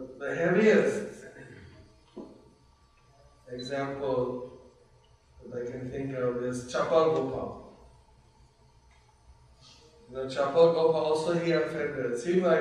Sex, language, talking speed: male, English, 85 wpm